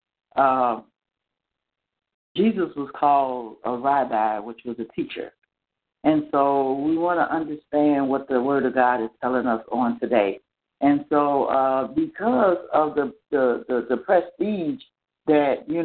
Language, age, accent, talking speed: English, 60-79, American, 140 wpm